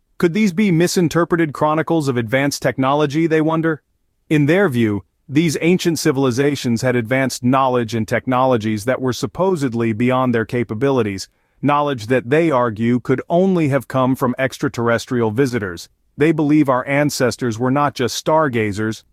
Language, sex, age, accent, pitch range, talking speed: English, male, 40-59, American, 115-145 Hz, 145 wpm